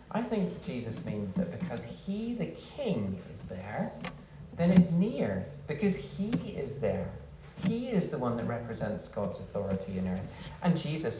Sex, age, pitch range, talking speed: male, 40-59, 120-195 Hz, 160 wpm